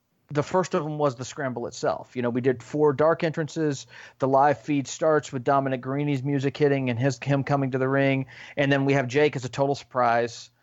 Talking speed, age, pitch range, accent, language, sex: 225 wpm, 30-49, 125-155 Hz, American, English, male